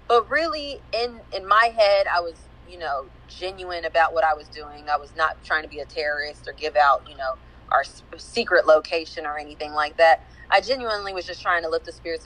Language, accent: English, American